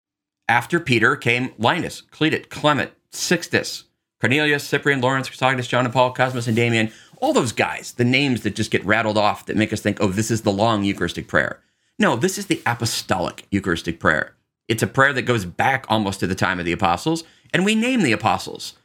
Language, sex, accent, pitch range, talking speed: English, male, American, 110-155 Hz, 200 wpm